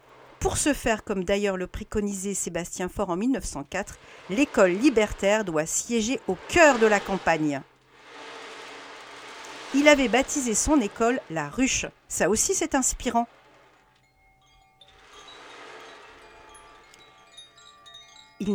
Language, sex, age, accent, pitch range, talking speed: French, female, 50-69, French, 160-220 Hz, 105 wpm